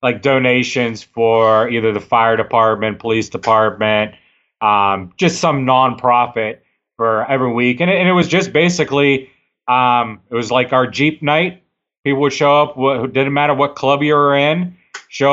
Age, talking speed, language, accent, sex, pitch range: 30-49, 170 wpm, English, American, male, 120-145 Hz